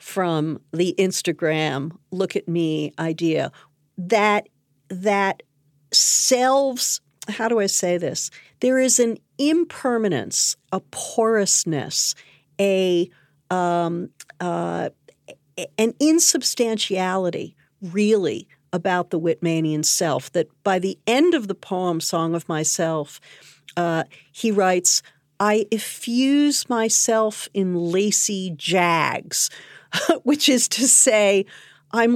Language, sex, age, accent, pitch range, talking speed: English, female, 50-69, American, 165-220 Hz, 105 wpm